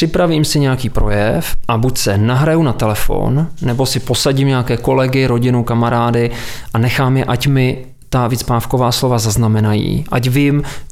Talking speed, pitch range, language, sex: 155 wpm, 120-145 Hz, Czech, male